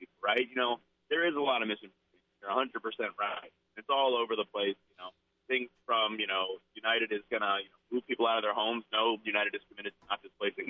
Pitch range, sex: 110-155 Hz, male